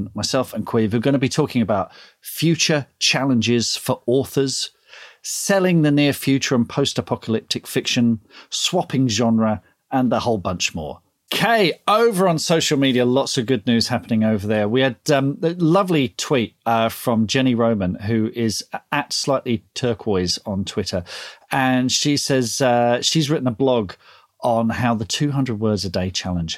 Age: 40-59